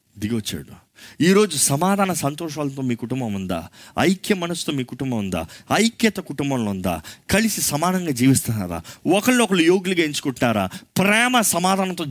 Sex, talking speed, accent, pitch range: male, 120 wpm, native, 110-175 Hz